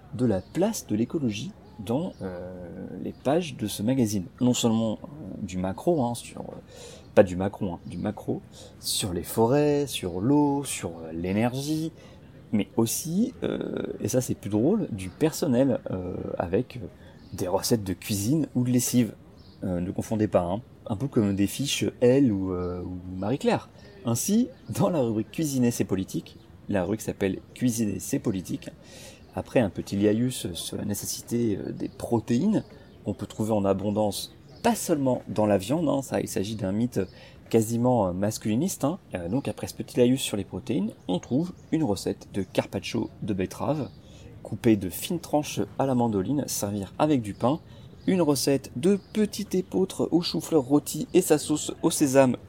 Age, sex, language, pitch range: 30-49, male, French, 100-135 Hz